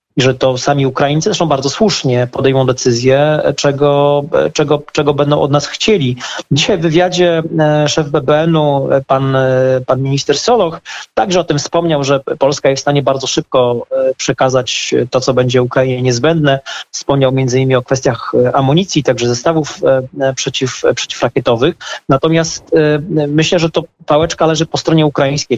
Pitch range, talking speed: 130-155 Hz, 145 wpm